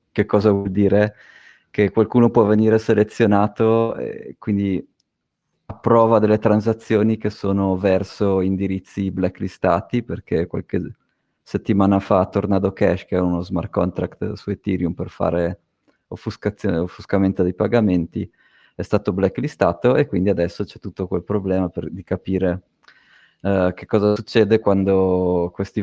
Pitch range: 90-105 Hz